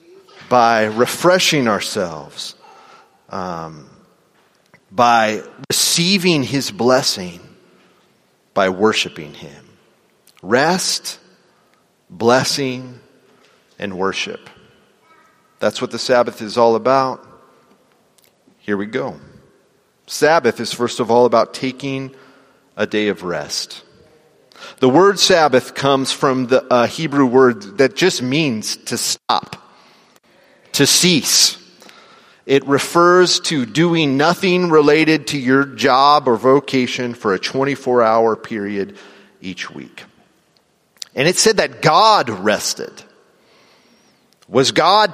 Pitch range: 120-160 Hz